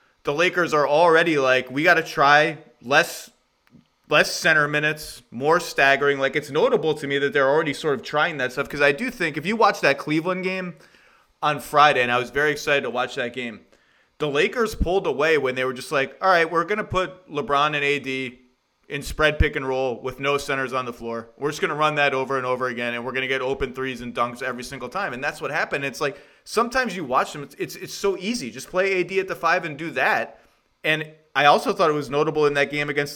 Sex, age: male, 30-49